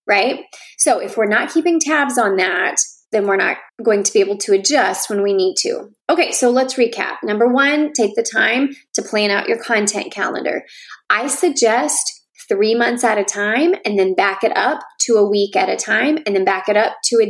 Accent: American